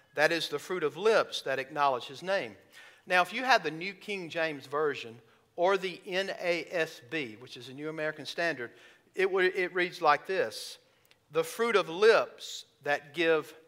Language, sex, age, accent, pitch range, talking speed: English, male, 50-69, American, 155-205 Hz, 170 wpm